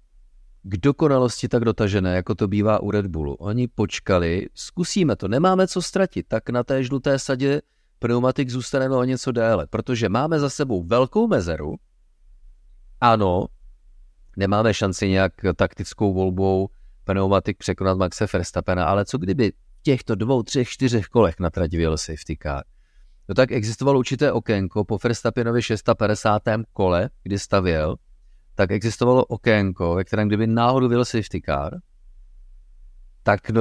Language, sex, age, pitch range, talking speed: Czech, male, 30-49, 90-115 Hz, 135 wpm